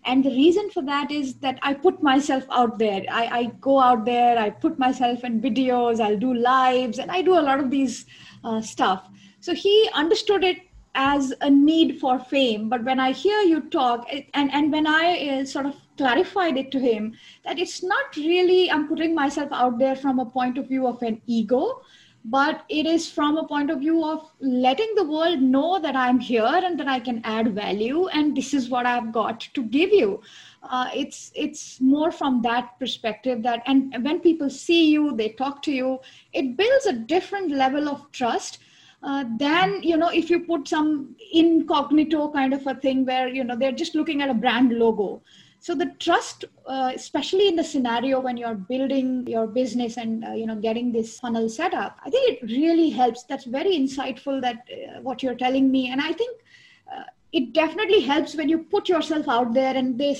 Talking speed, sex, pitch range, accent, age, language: 200 wpm, female, 250-320 Hz, Indian, 20-39, English